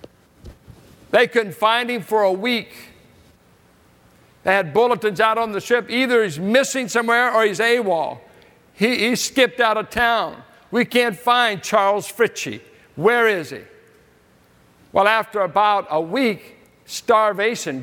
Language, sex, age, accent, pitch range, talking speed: English, male, 60-79, American, 190-235 Hz, 140 wpm